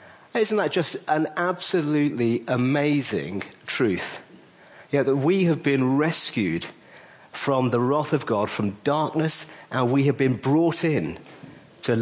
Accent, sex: British, male